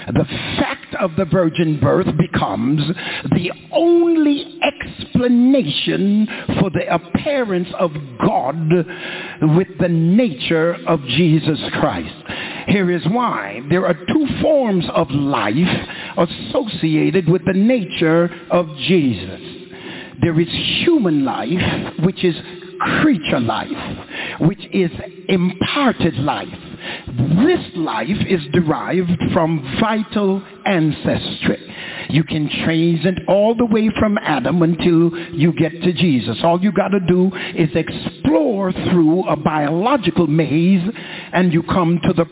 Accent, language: American, English